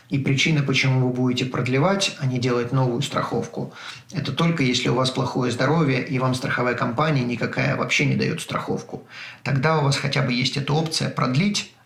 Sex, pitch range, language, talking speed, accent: male, 125-145 Hz, Russian, 185 wpm, native